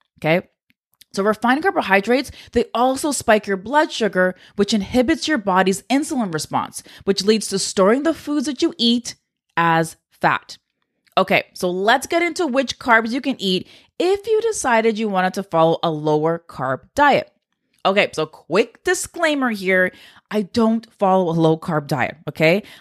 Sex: female